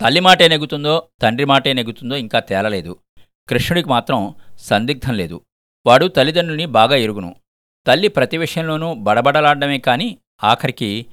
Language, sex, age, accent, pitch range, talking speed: Telugu, male, 50-69, native, 110-145 Hz, 115 wpm